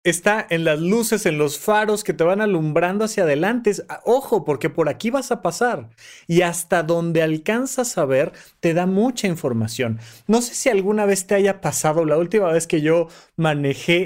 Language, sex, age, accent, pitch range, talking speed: Spanish, male, 30-49, Mexican, 155-210 Hz, 190 wpm